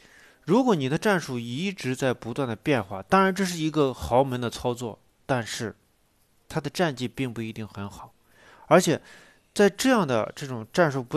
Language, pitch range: Chinese, 105-145 Hz